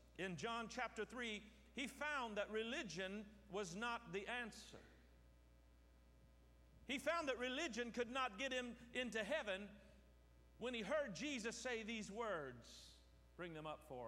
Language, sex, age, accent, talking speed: English, male, 50-69, American, 140 wpm